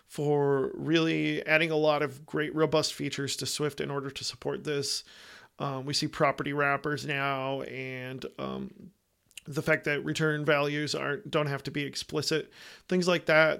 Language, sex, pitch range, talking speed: English, male, 140-155 Hz, 170 wpm